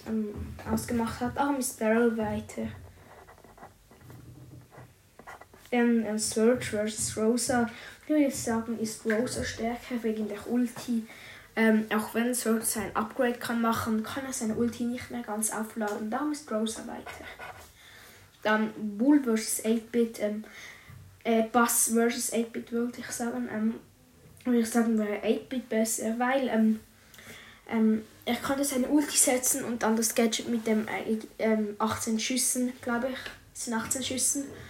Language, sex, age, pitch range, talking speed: German, female, 10-29, 220-245 Hz, 140 wpm